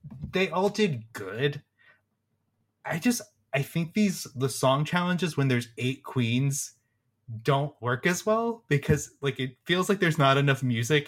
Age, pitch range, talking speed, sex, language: 20-39, 130-170 Hz, 155 wpm, male, English